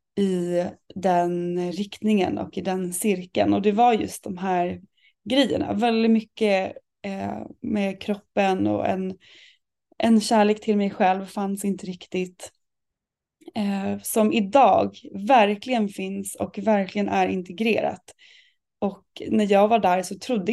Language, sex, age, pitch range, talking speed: Swedish, female, 20-39, 180-215 Hz, 125 wpm